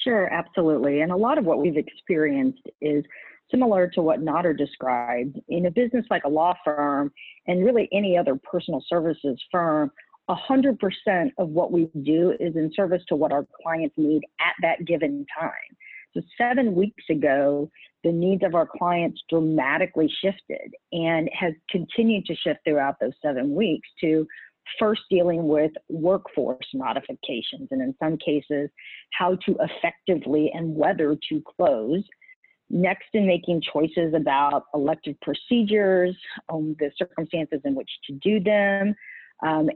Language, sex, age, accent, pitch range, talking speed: English, female, 50-69, American, 150-195 Hz, 150 wpm